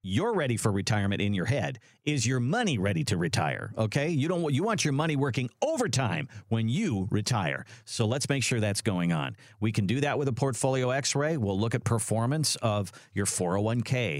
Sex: male